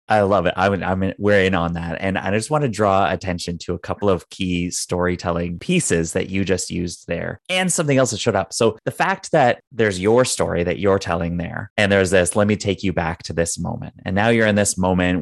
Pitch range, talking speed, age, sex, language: 90-115 Hz, 245 wpm, 20-39, male, English